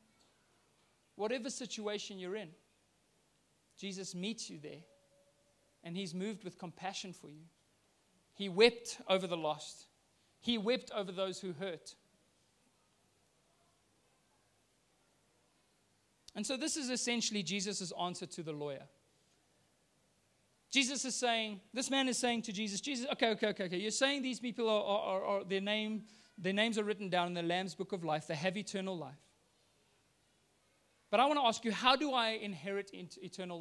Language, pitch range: English, 175-220 Hz